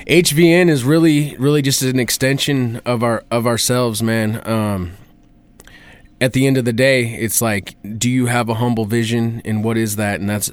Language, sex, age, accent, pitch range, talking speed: English, male, 20-39, American, 115-135 Hz, 190 wpm